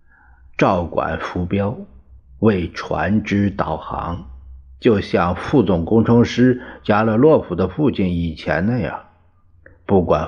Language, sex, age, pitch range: Chinese, male, 50-69, 80-105 Hz